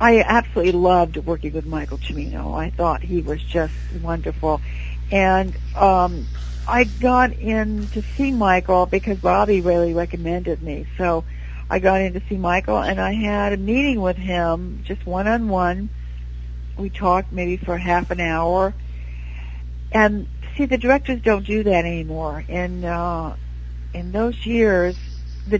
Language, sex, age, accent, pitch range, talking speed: English, female, 60-79, American, 155-205 Hz, 150 wpm